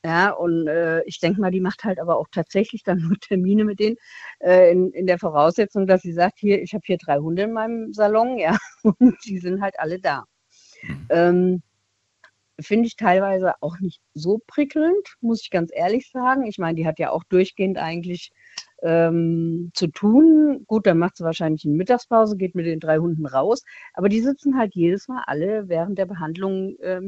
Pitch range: 165-220 Hz